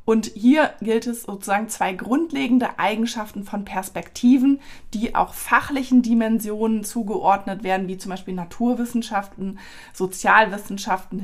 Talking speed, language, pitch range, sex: 110 wpm, German, 190-240 Hz, female